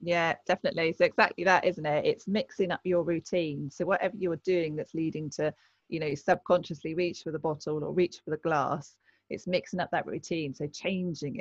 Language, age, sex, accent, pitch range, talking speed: English, 30-49, female, British, 155-180 Hz, 200 wpm